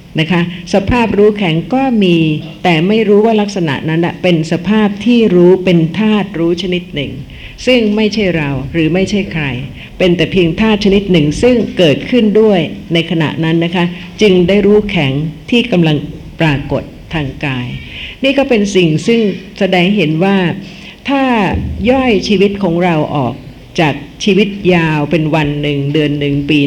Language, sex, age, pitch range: Thai, female, 60-79, 155-200 Hz